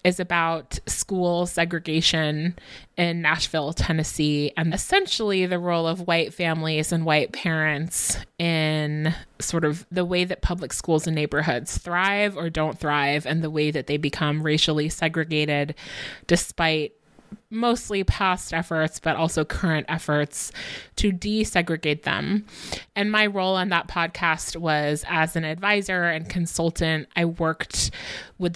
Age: 20-39